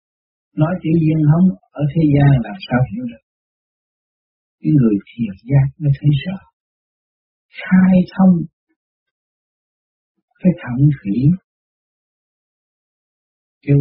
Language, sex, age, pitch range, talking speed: Vietnamese, male, 60-79, 125-185 Hz, 105 wpm